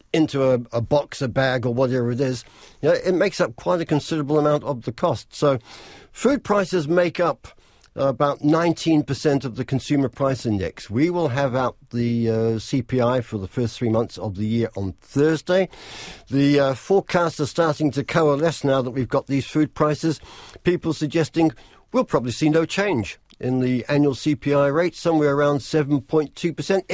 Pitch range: 120-155 Hz